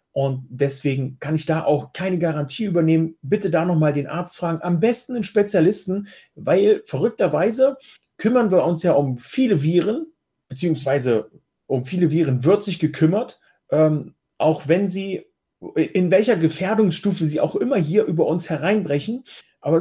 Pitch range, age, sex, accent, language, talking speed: 160-215 Hz, 40-59, male, German, German, 150 wpm